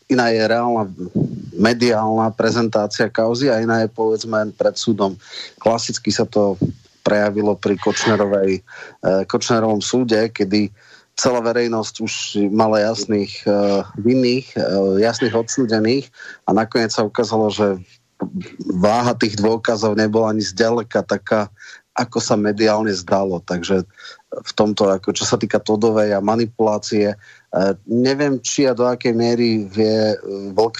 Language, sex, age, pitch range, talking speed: Slovak, male, 30-49, 105-115 Hz, 125 wpm